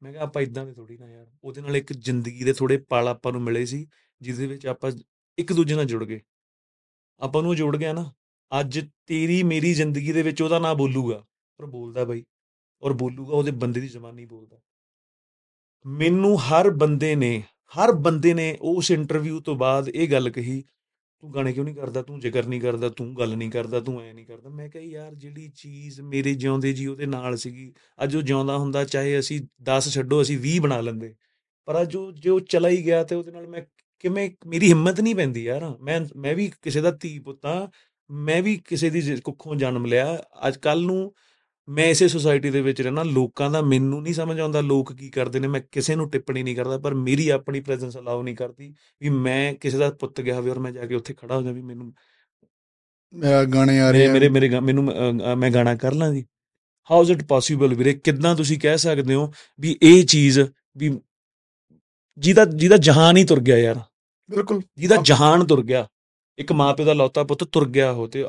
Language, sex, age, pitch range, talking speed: Punjabi, male, 30-49, 130-160 Hz, 135 wpm